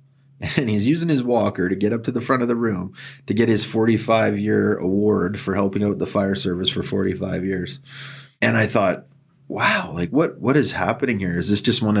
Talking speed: 210 wpm